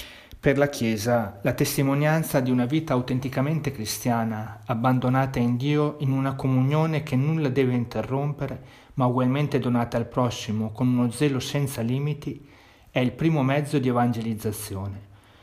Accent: native